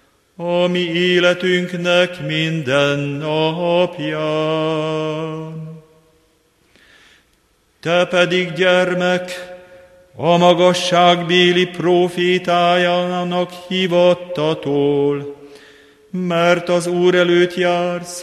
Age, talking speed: 40-59, 60 wpm